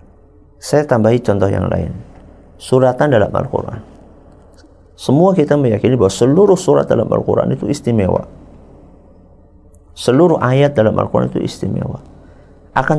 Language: Indonesian